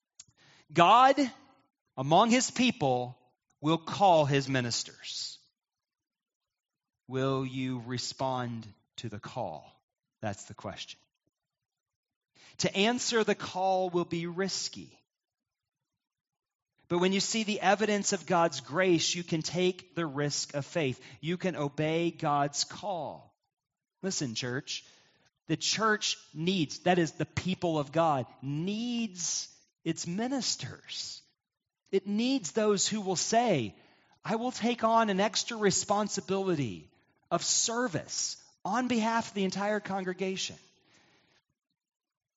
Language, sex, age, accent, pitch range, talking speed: English, male, 40-59, American, 130-195 Hz, 115 wpm